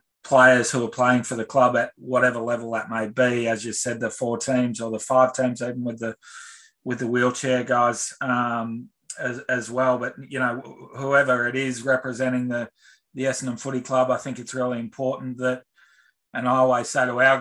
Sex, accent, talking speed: male, Australian, 200 wpm